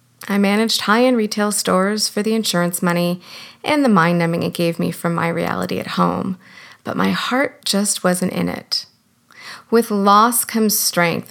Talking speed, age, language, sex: 165 wpm, 30-49, English, female